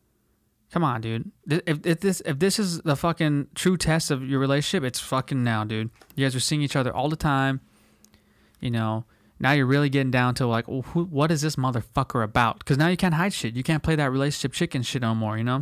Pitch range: 120-150 Hz